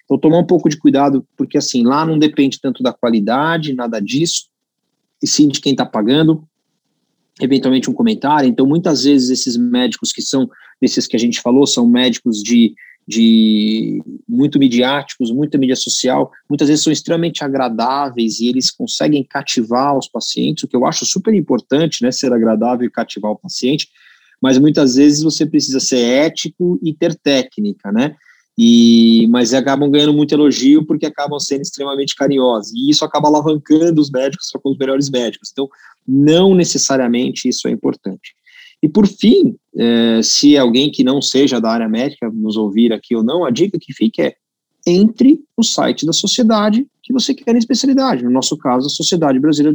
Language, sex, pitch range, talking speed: Portuguese, male, 130-195 Hz, 175 wpm